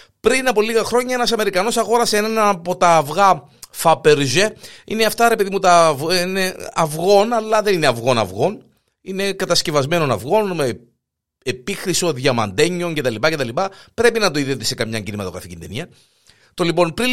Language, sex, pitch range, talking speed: Greek, male, 130-200 Hz, 155 wpm